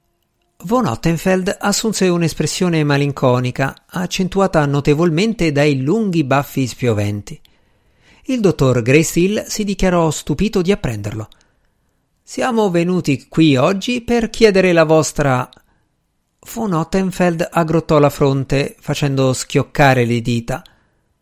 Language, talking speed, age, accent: Italian, 105 wpm, 50-69, native